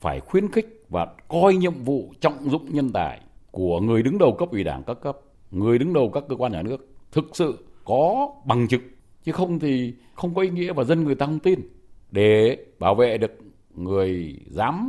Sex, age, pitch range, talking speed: male, 60-79, 105-150 Hz, 210 wpm